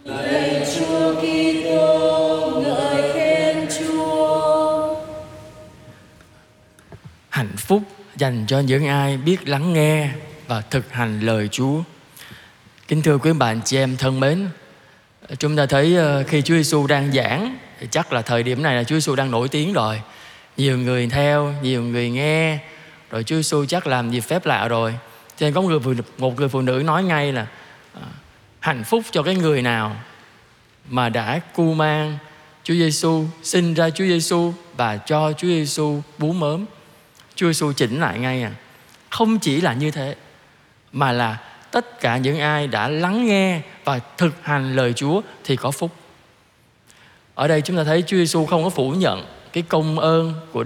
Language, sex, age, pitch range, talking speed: Vietnamese, male, 20-39, 130-165 Hz, 160 wpm